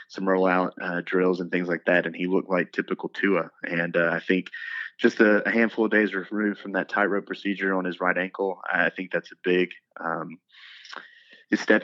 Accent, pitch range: American, 90-100 Hz